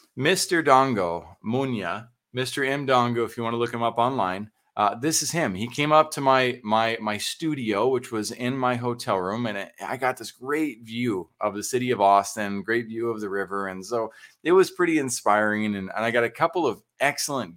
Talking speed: 210 wpm